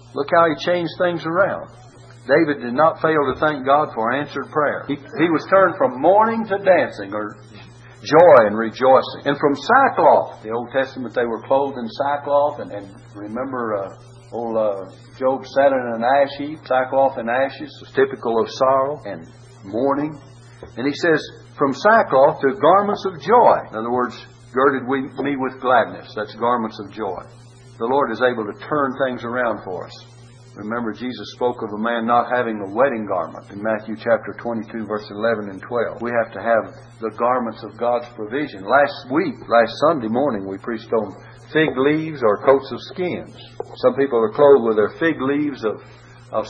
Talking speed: 180 wpm